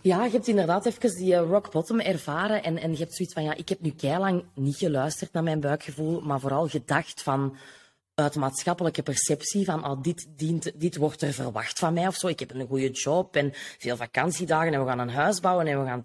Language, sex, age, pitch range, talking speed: English, female, 20-39, 150-200 Hz, 225 wpm